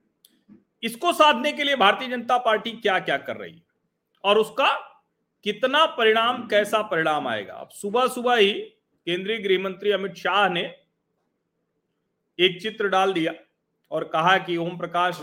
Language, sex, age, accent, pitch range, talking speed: Hindi, male, 40-59, native, 175-235 Hz, 150 wpm